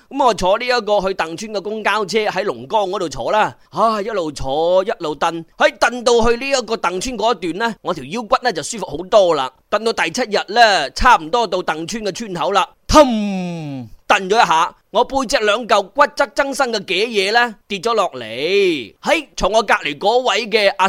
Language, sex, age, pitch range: Chinese, male, 20-39, 165-255 Hz